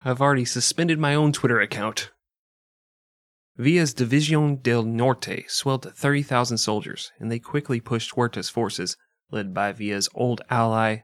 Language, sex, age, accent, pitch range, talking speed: English, male, 30-49, American, 115-145 Hz, 140 wpm